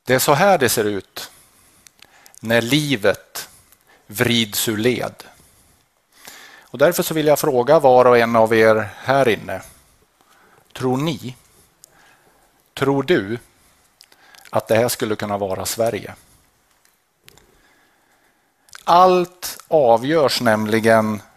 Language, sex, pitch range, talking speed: English, male, 110-140 Hz, 100 wpm